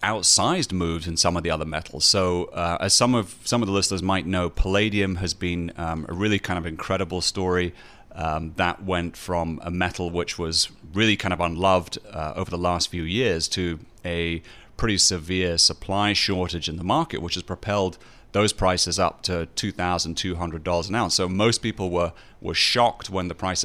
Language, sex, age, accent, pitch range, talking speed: English, male, 30-49, British, 85-100 Hz, 190 wpm